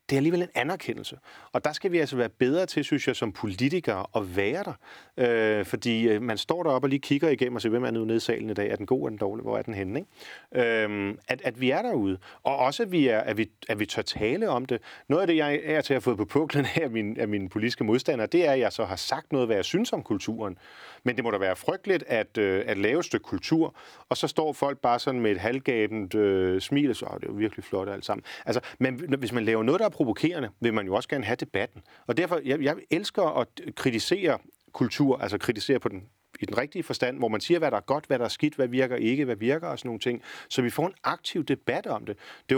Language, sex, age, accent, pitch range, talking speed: Danish, male, 40-59, native, 110-140 Hz, 265 wpm